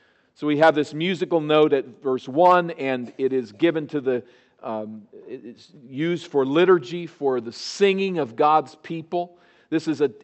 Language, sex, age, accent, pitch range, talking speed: English, male, 50-69, American, 135-175 Hz, 170 wpm